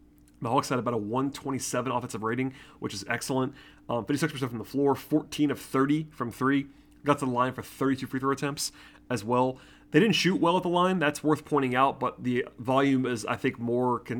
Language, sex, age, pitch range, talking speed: English, male, 30-49, 120-150 Hz, 210 wpm